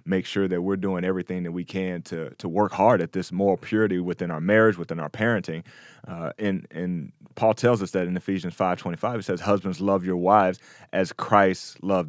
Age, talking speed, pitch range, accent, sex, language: 30-49, 220 wpm, 90-105 Hz, American, male, English